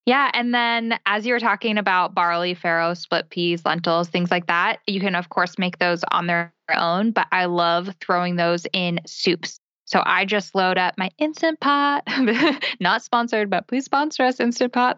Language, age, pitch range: English, 10-29, 180-225 Hz